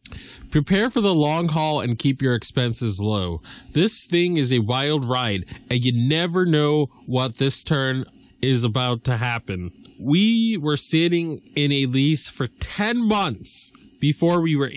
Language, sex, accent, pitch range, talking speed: English, male, American, 115-150 Hz, 160 wpm